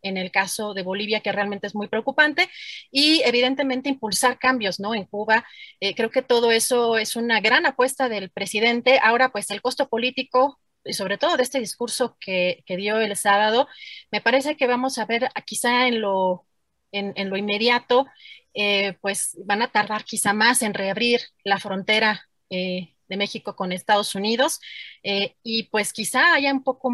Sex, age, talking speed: female, 30-49, 180 wpm